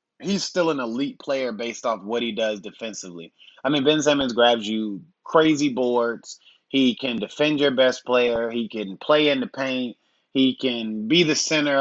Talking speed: 185 wpm